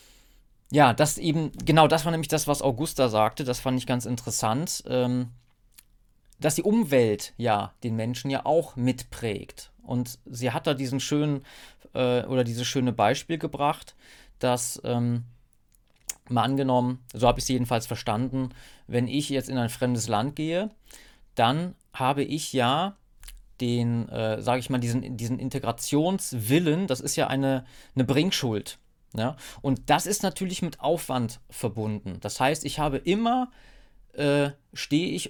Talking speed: 155 wpm